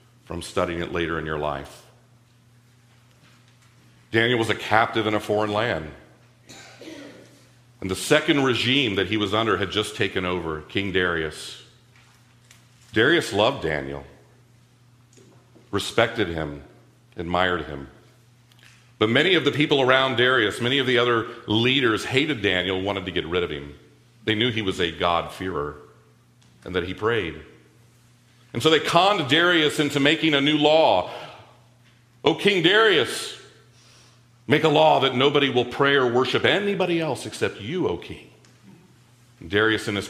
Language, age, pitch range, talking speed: English, 40-59, 95-120 Hz, 145 wpm